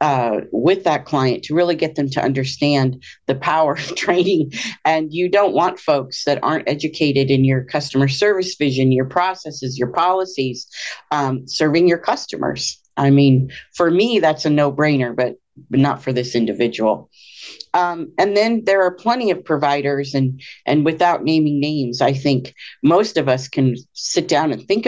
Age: 40-59